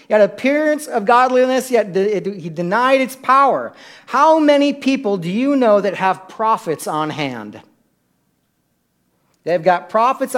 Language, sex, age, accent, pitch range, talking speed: English, male, 40-59, American, 140-220 Hz, 135 wpm